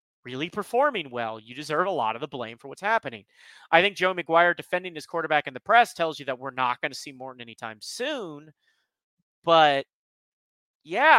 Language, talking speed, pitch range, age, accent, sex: English, 195 wpm, 145-235 Hz, 40-59, American, male